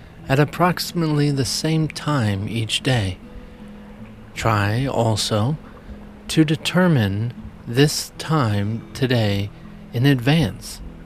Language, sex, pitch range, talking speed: English, male, 110-145 Hz, 85 wpm